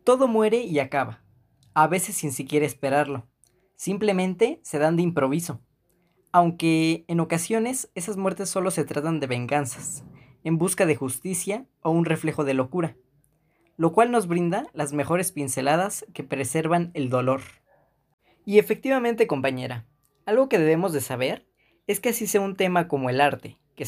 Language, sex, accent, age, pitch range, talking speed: Spanish, female, Mexican, 20-39, 135-185 Hz, 155 wpm